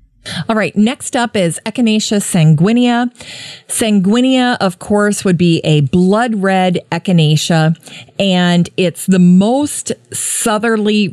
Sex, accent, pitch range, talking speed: female, American, 155-205 Hz, 115 wpm